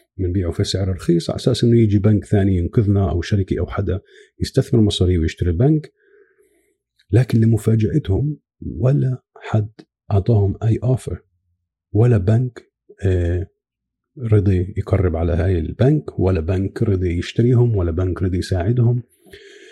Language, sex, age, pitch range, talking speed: Arabic, male, 50-69, 95-140 Hz, 125 wpm